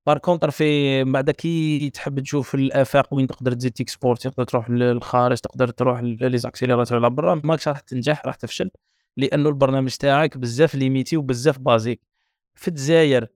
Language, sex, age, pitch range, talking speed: Arabic, male, 20-39, 125-155 Hz, 150 wpm